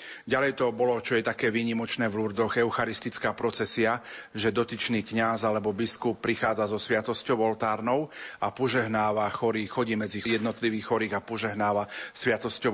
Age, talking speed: 40-59, 140 wpm